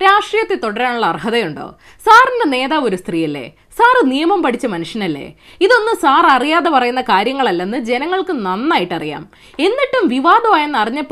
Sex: female